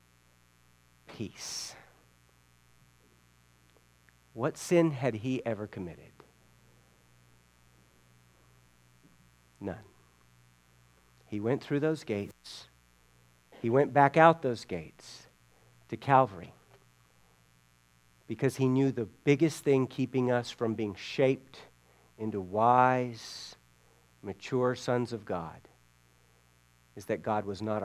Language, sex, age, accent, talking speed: English, male, 50-69, American, 95 wpm